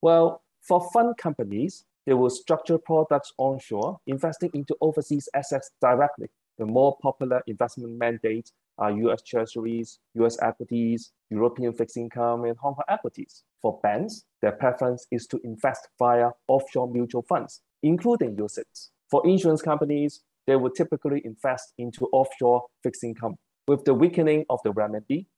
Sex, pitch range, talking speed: male, 120-155 Hz, 145 wpm